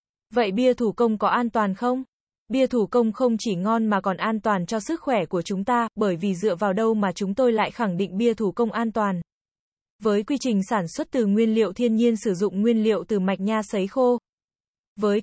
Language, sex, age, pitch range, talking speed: Vietnamese, female, 20-39, 205-240 Hz, 235 wpm